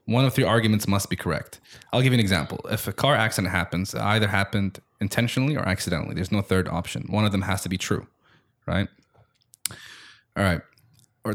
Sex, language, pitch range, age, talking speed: male, English, 100-125 Hz, 20-39, 200 wpm